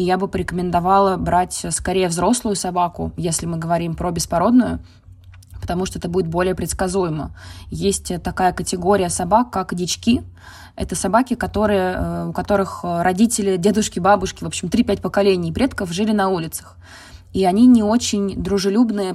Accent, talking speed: native, 140 wpm